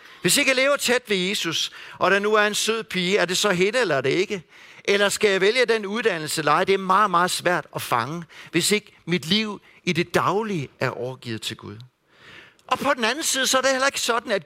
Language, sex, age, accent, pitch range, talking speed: Danish, male, 60-79, native, 175-235 Hz, 240 wpm